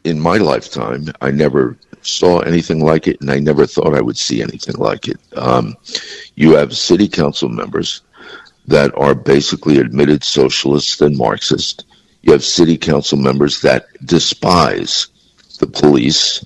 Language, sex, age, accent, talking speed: English, male, 60-79, American, 150 wpm